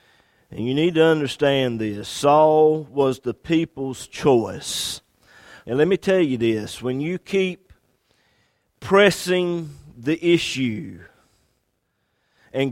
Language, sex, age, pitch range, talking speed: English, male, 50-69, 125-165 Hz, 115 wpm